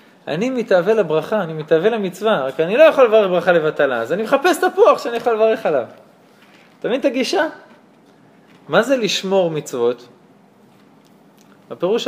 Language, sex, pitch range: Hebrew, male, 160-245 Hz